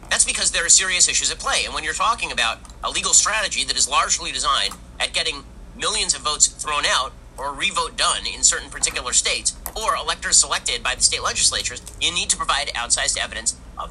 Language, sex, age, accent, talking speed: English, male, 40-59, American, 210 wpm